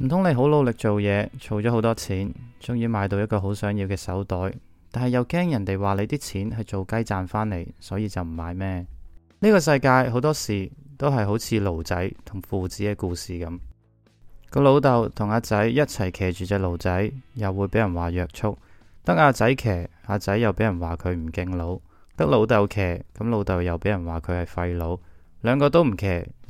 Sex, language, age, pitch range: male, Chinese, 20-39, 90-115 Hz